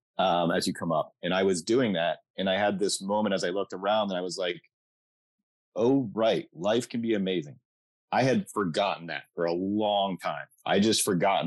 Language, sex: English, male